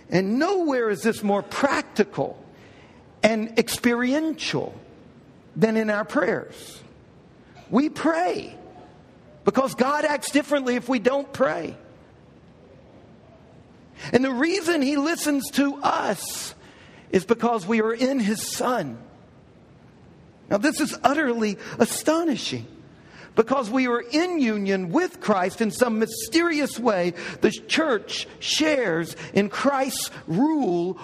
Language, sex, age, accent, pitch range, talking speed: English, male, 50-69, American, 225-295 Hz, 110 wpm